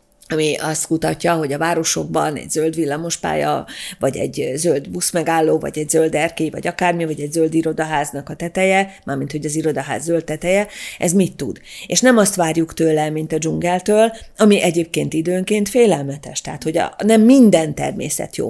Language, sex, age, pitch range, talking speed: Hungarian, female, 30-49, 155-190 Hz, 170 wpm